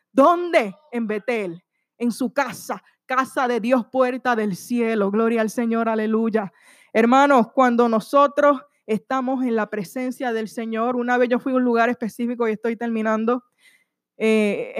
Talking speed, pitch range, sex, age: 150 wpm, 220-285 Hz, female, 20-39